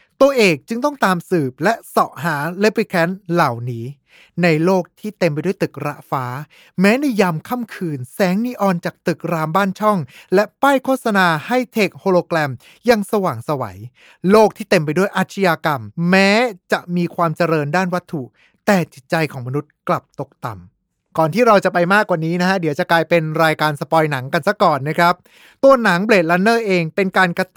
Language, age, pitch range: Thai, 20-39, 165-215 Hz